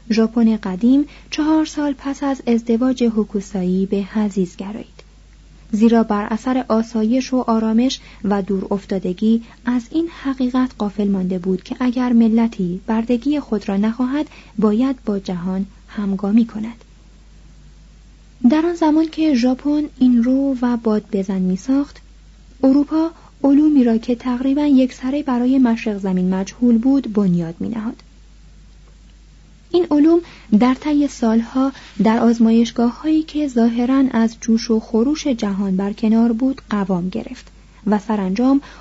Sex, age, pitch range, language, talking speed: female, 30-49, 210-265 Hz, Persian, 130 wpm